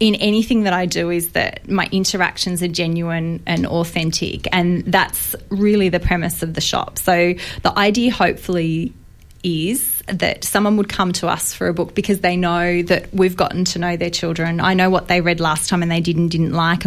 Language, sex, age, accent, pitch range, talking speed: English, female, 20-39, Australian, 170-185 Hz, 205 wpm